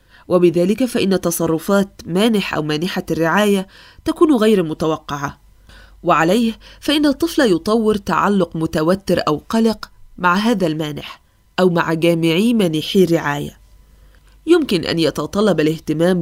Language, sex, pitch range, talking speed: Arabic, female, 160-220 Hz, 110 wpm